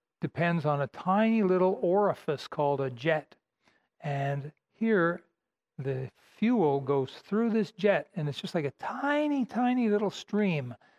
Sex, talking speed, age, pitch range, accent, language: male, 140 wpm, 60-79, 145-195 Hz, American, English